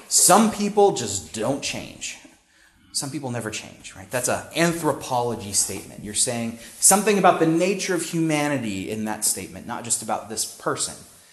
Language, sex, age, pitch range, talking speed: English, male, 30-49, 110-150 Hz, 160 wpm